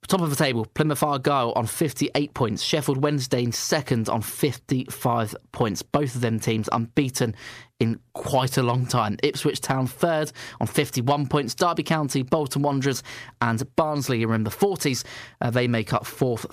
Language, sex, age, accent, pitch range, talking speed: English, male, 20-39, British, 115-145 Hz, 170 wpm